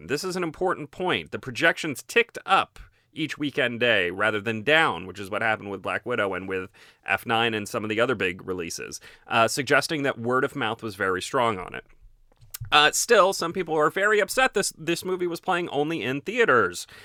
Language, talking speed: English, 205 wpm